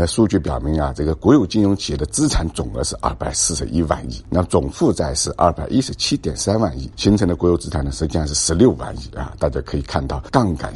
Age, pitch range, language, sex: 60-79, 75-95 Hz, Chinese, male